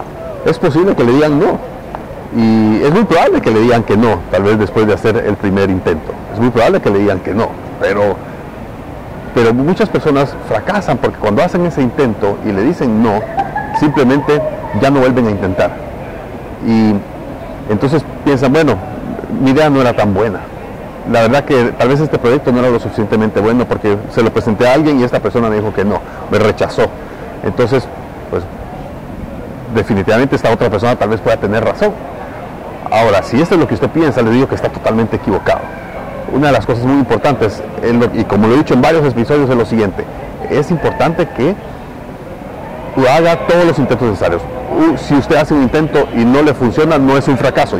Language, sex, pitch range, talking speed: Spanish, male, 110-140 Hz, 190 wpm